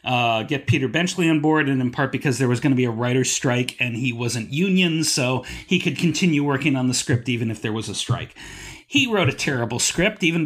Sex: male